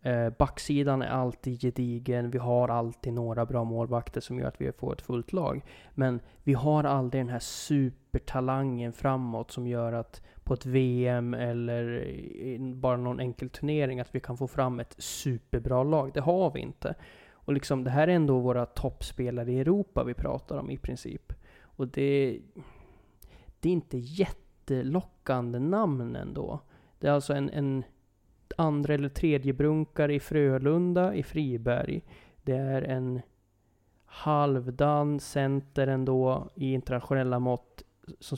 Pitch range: 120-145 Hz